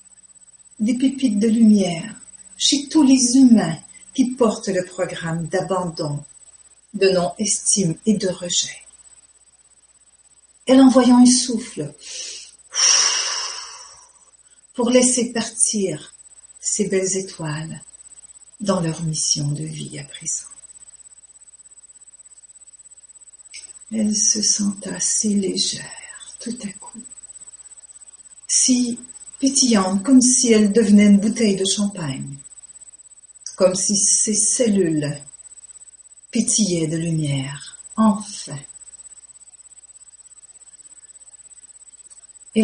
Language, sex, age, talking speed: French, female, 60-79, 90 wpm